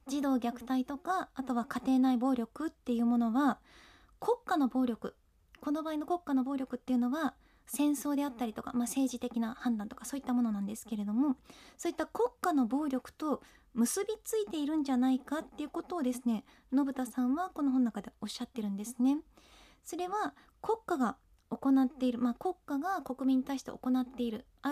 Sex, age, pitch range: female, 20-39, 245-300 Hz